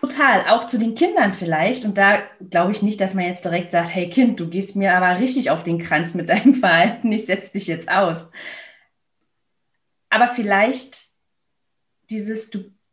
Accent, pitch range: German, 180-230 Hz